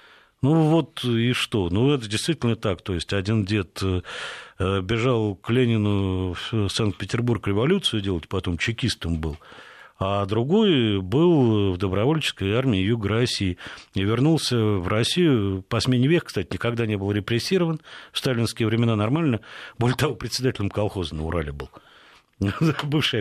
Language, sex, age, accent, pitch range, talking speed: Russian, male, 50-69, native, 95-125 Hz, 140 wpm